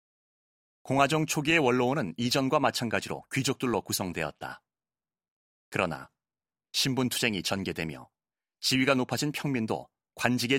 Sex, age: male, 30-49